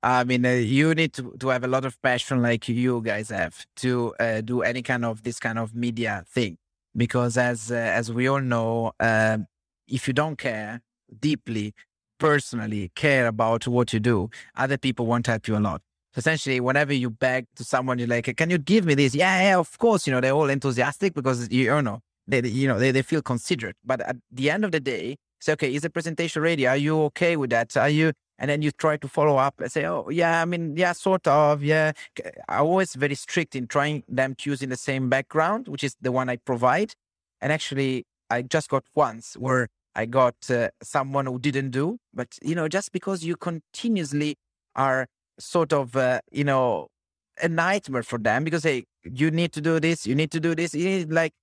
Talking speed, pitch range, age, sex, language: 220 wpm, 120-155 Hz, 30-49, male, English